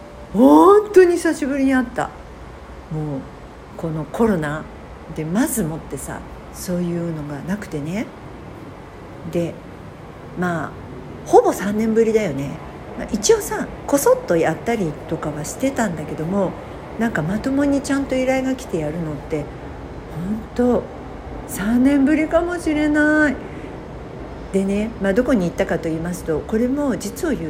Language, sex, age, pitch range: Japanese, female, 50-69, 155-260 Hz